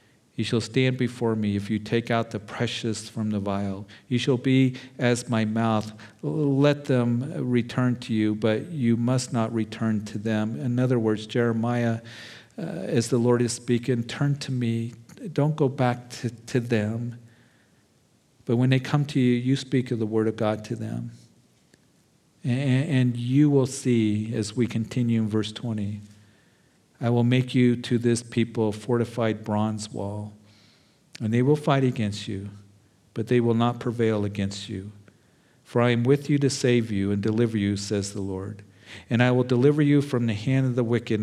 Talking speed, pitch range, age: 185 wpm, 110-125 Hz, 50-69